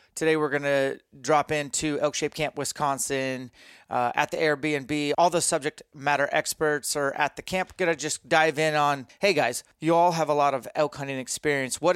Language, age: English, 30-49